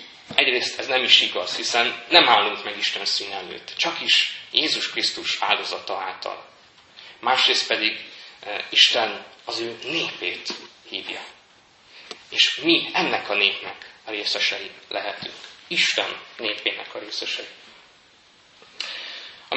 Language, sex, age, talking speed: Hungarian, male, 30-49, 115 wpm